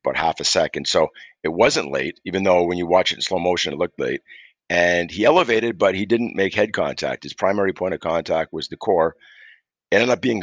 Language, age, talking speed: English, 50-69, 235 wpm